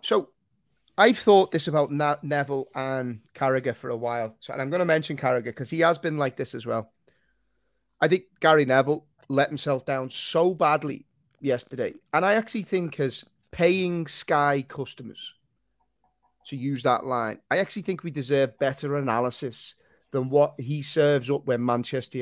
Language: English